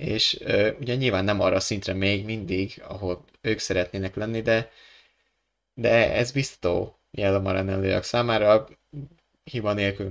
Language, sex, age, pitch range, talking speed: Hungarian, male, 20-39, 95-115 Hz, 135 wpm